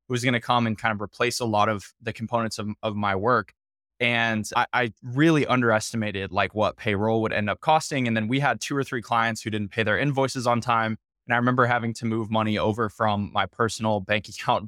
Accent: American